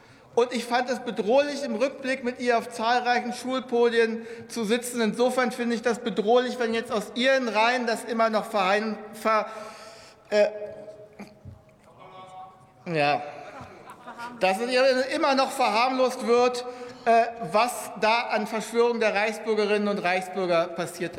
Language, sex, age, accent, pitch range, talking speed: German, male, 60-79, German, 210-250 Hz, 135 wpm